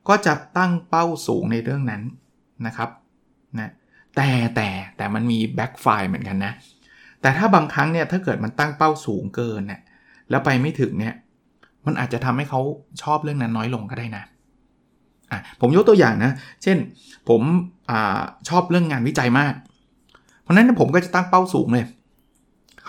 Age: 20-39